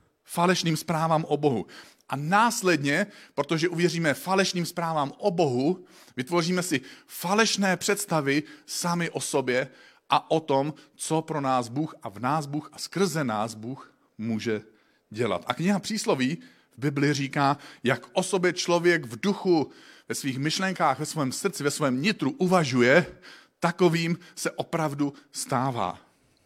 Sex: male